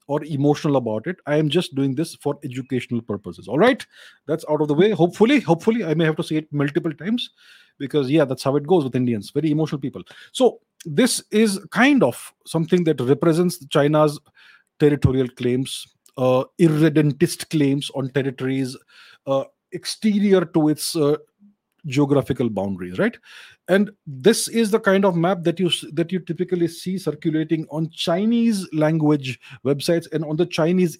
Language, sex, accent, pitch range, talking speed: English, male, Indian, 135-170 Hz, 165 wpm